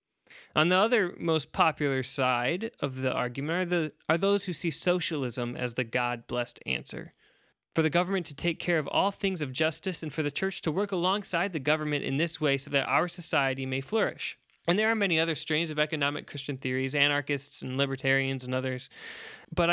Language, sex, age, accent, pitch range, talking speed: English, male, 20-39, American, 130-170 Hz, 195 wpm